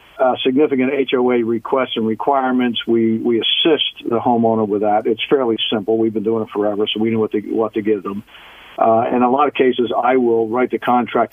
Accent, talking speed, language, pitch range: American, 215 wpm, English, 115-135 Hz